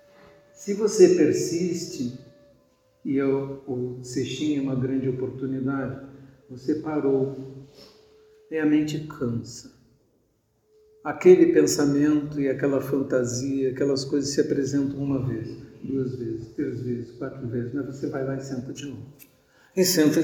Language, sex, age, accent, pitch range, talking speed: Portuguese, male, 60-79, Brazilian, 135-170 Hz, 130 wpm